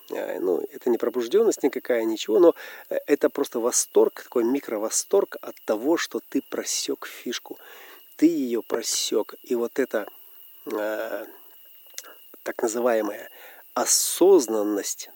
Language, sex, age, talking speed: Russian, male, 40-59, 110 wpm